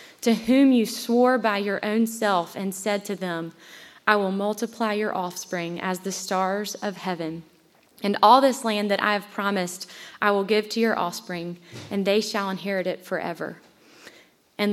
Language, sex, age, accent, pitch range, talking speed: English, female, 20-39, American, 180-220 Hz, 175 wpm